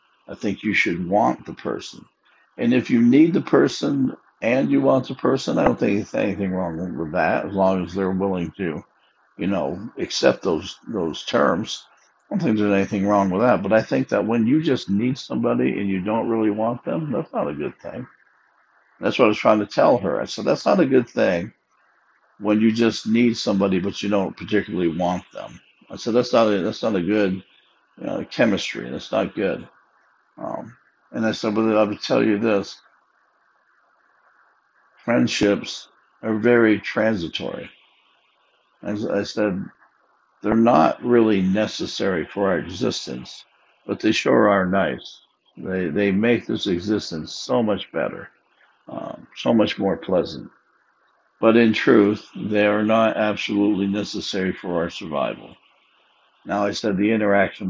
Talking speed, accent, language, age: 175 wpm, American, English, 60-79